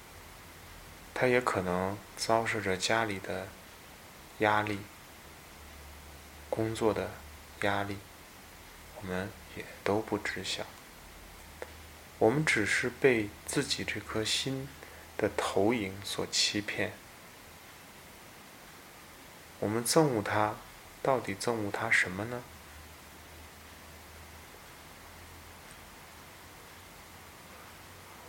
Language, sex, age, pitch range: Chinese, male, 20-39, 80-105 Hz